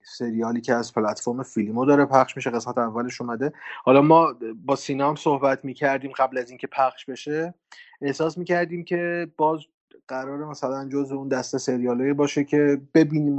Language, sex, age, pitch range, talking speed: Persian, male, 30-49, 120-145 Hz, 165 wpm